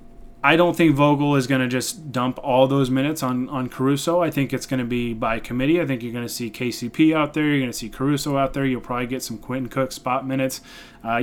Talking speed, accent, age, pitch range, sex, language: 235 wpm, American, 20-39, 125-155 Hz, male, English